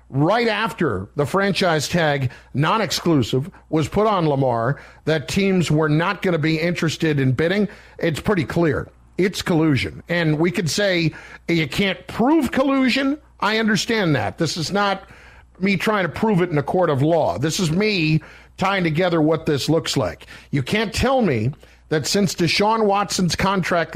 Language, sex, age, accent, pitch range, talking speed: English, male, 50-69, American, 145-185 Hz, 170 wpm